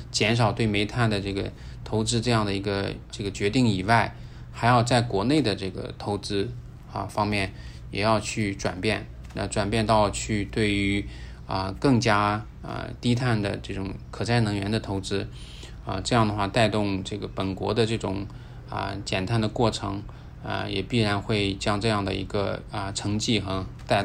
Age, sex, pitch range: 20-39, male, 100-120 Hz